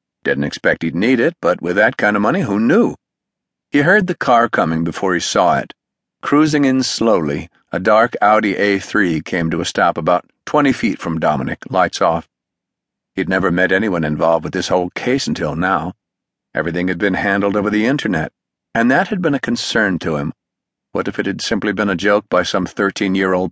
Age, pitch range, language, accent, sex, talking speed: 50-69, 85-110 Hz, English, American, male, 195 wpm